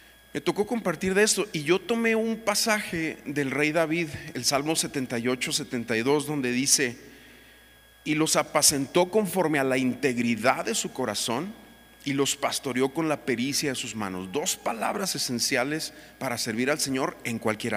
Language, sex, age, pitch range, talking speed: Spanish, male, 40-59, 120-160 Hz, 160 wpm